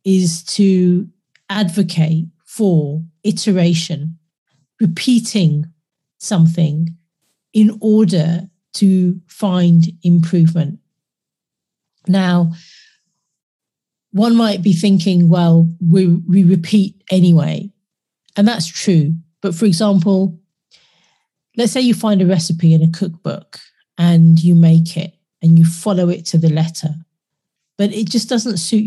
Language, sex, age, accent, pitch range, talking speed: English, female, 40-59, British, 165-195 Hz, 110 wpm